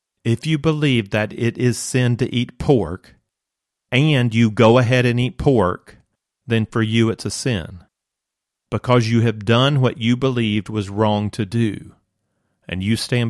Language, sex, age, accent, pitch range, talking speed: English, male, 40-59, American, 110-130 Hz, 165 wpm